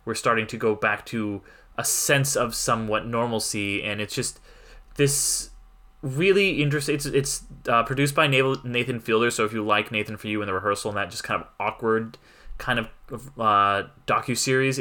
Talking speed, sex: 180 wpm, male